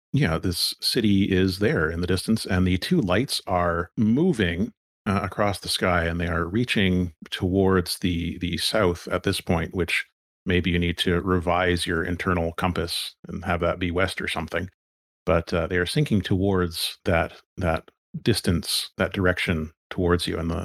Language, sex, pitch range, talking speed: English, male, 85-100 Hz, 175 wpm